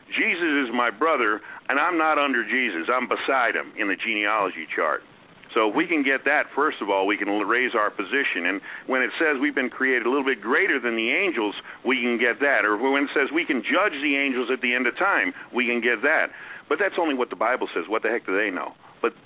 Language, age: English, 50-69